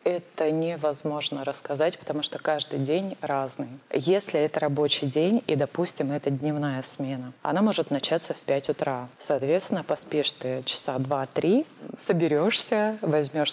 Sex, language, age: female, Russian, 20-39